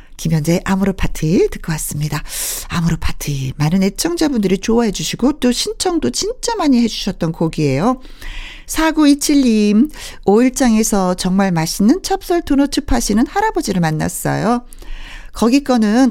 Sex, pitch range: female, 170-240 Hz